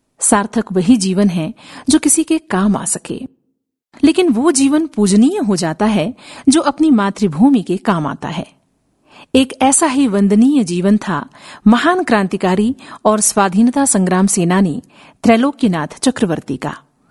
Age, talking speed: 50-69, 135 wpm